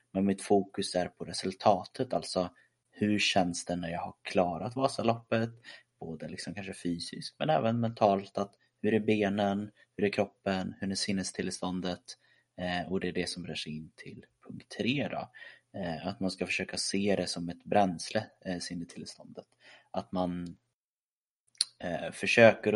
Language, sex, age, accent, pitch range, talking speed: Swedish, male, 30-49, native, 95-105 Hz, 155 wpm